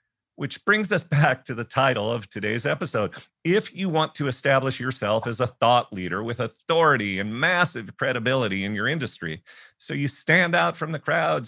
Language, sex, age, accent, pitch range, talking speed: English, male, 40-59, American, 115-160 Hz, 185 wpm